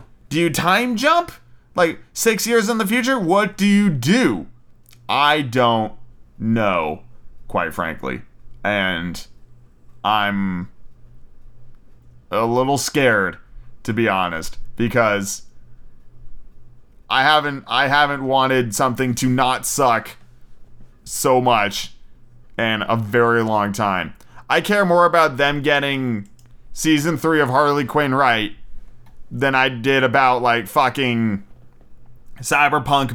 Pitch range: 90-135 Hz